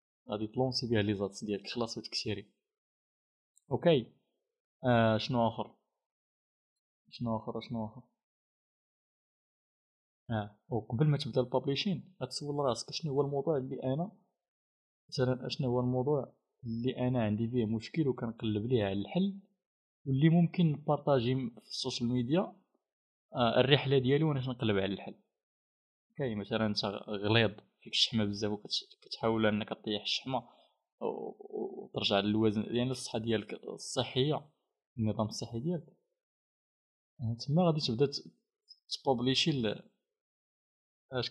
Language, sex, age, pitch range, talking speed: Arabic, male, 20-39, 110-145 Hz, 115 wpm